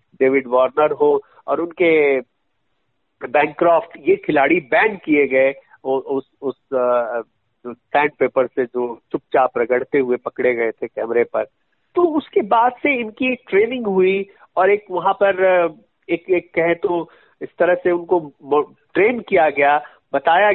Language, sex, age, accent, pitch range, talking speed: Hindi, male, 50-69, native, 150-245 Hz, 140 wpm